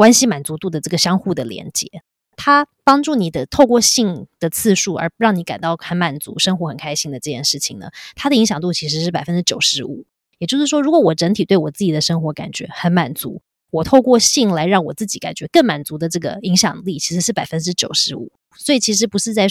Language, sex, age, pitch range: Chinese, female, 20-39, 165-225 Hz